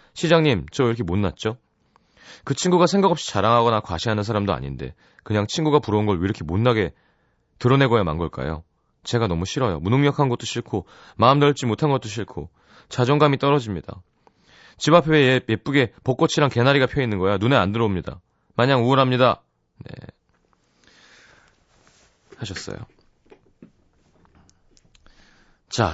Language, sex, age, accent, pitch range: Korean, male, 30-49, native, 90-130 Hz